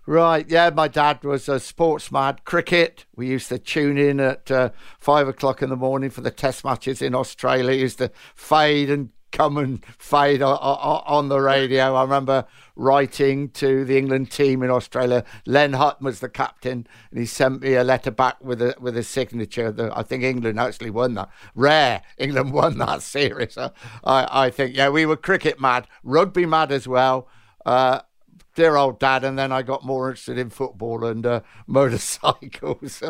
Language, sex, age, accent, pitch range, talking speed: English, male, 60-79, British, 120-135 Hz, 185 wpm